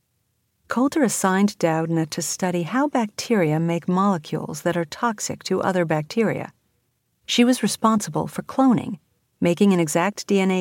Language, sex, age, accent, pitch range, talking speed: English, female, 50-69, American, 160-200 Hz, 135 wpm